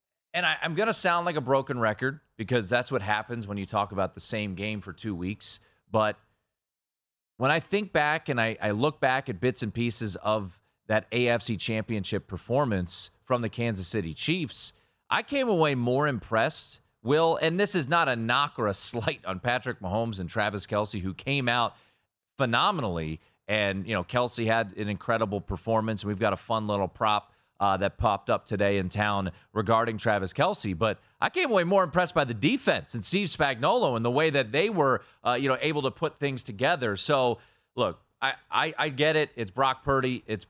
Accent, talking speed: American, 200 wpm